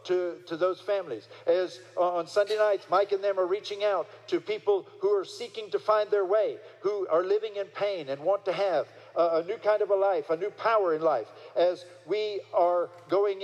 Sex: male